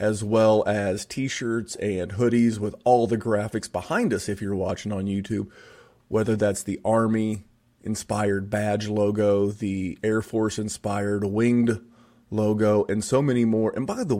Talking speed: 150 wpm